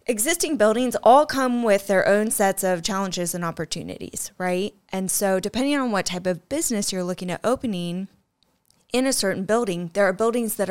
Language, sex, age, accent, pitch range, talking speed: English, female, 20-39, American, 180-215 Hz, 185 wpm